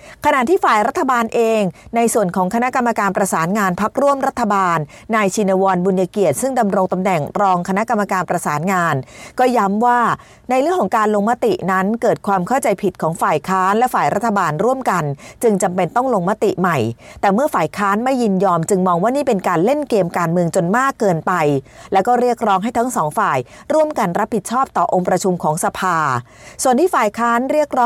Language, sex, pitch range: Thai, female, 180-235 Hz